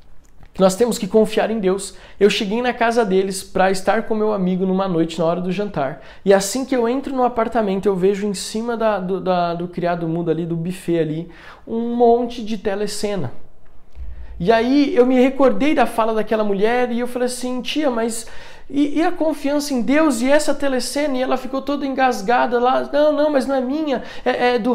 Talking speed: 205 wpm